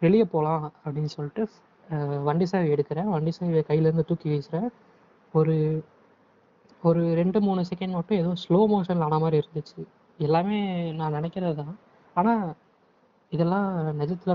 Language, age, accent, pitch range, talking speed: Tamil, 20-39, native, 155-200 Hz, 130 wpm